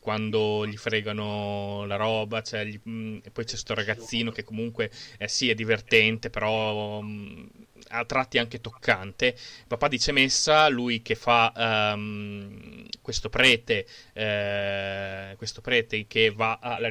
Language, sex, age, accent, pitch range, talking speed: Italian, male, 20-39, native, 105-120 Hz, 135 wpm